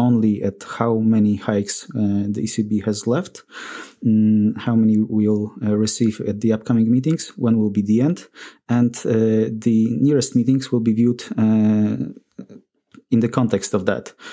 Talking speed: 165 wpm